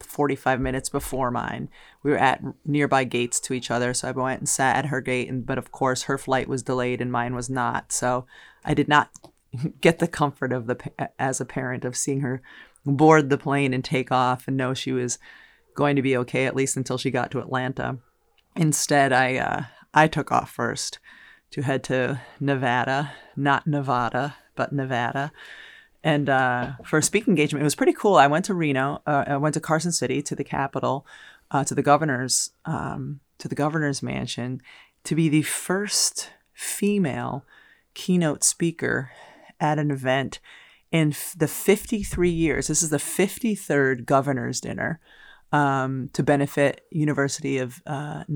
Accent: American